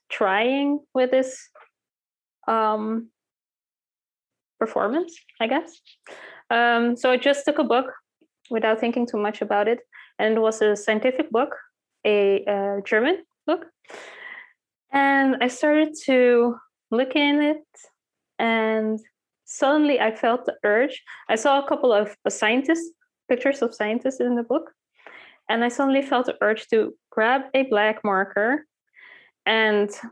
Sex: female